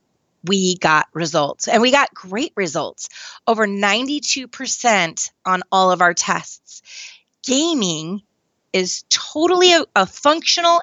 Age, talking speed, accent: 30-49, 115 wpm, American